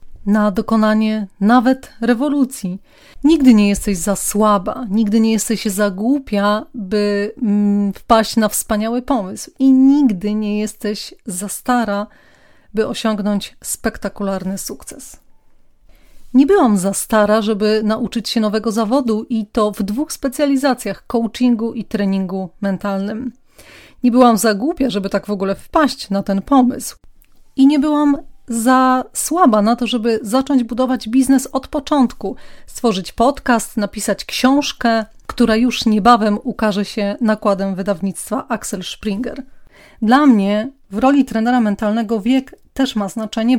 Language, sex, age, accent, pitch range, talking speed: Polish, female, 30-49, native, 210-255 Hz, 130 wpm